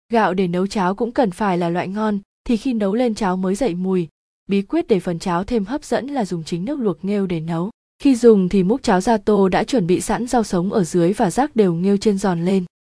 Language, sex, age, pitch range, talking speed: Vietnamese, female, 20-39, 180-230 Hz, 260 wpm